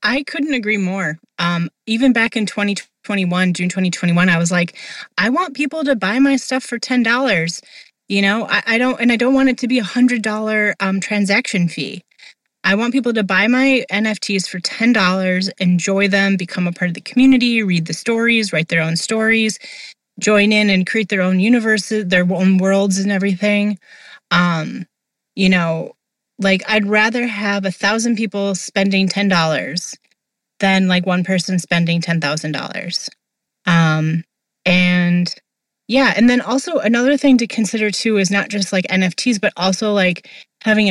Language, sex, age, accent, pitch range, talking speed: English, female, 30-49, American, 180-225 Hz, 165 wpm